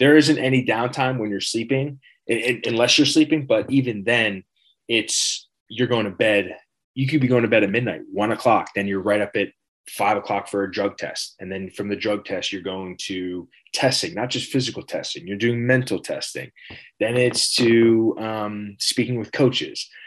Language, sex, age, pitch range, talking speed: English, male, 20-39, 100-130 Hz, 195 wpm